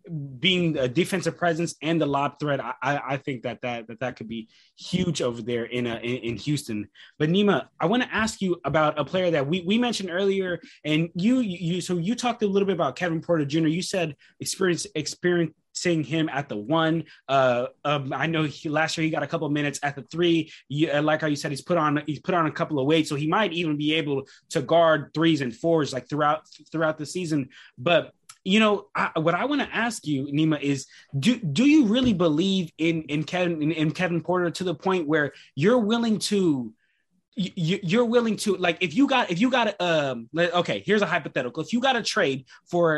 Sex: male